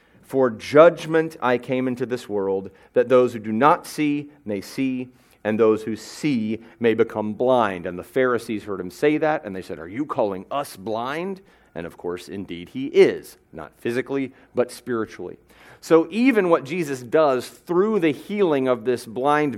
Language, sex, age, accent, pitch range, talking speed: English, male, 40-59, American, 100-135 Hz, 180 wpm